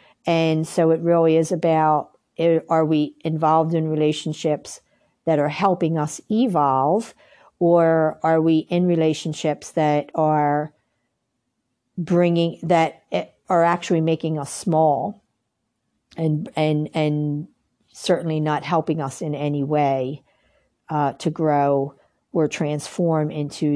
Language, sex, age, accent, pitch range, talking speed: English, female, 50-69, American, 150-175 Hz, 115 wpm